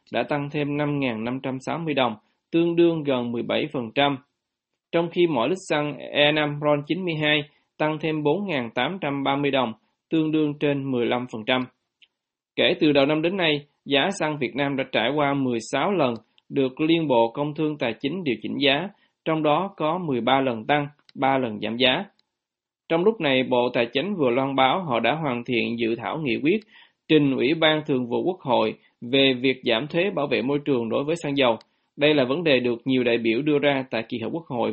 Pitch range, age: 125-155 Hz, 20-39